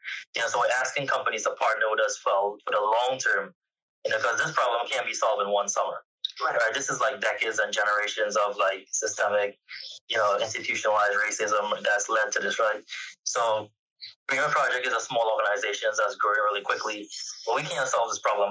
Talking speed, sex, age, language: 205 wpm, male, 20-39, English